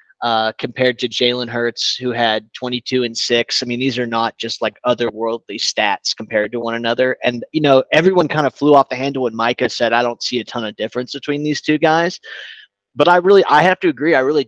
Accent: American